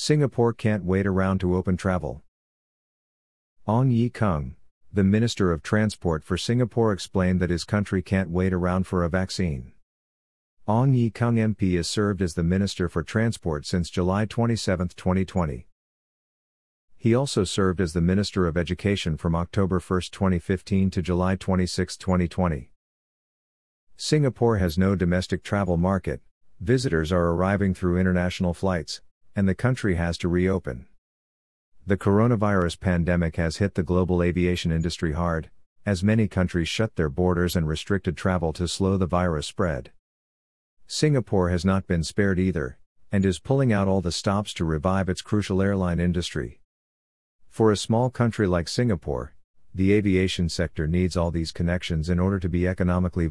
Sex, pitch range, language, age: male, 85-100 Hz, English, 50-69